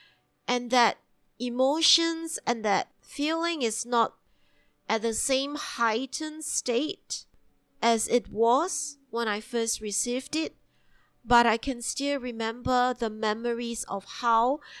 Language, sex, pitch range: English, female, 225-270 Hz